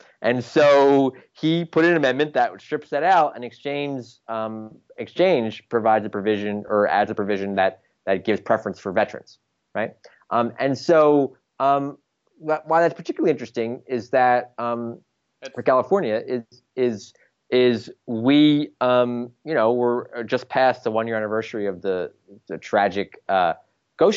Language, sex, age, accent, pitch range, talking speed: English, male, 30-49, American, 100-125 Hz, 155 wpm